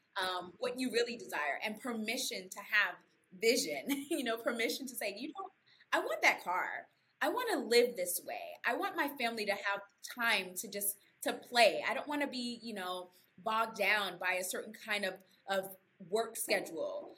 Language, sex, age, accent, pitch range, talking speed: English, female, 20-39, American, 190-245 Hz, 190 wpm